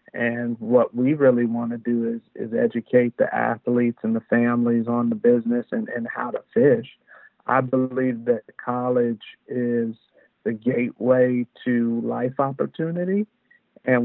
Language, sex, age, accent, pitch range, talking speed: English, male, 50-69, American, 120-130 Hz, 145 wpm